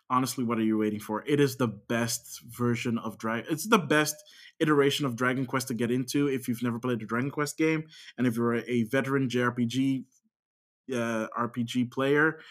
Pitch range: 115-140 Hz